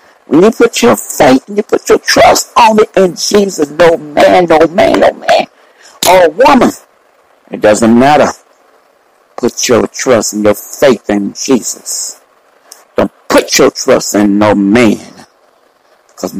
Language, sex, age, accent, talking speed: English, male, 60-79, American, 150 wpm